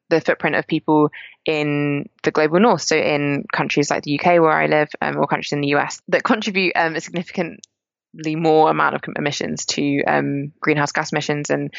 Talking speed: 195 wpm